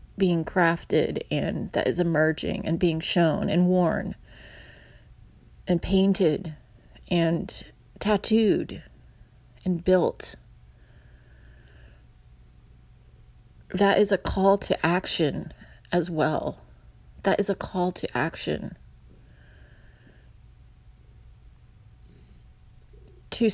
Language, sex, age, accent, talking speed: English, female, 30-49, American, 80 wpm